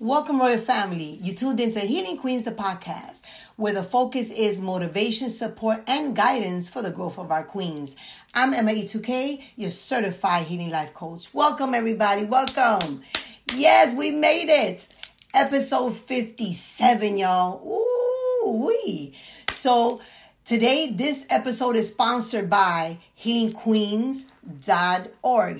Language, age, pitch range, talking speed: English, 40-59, 185-245 Hz, 120 wpm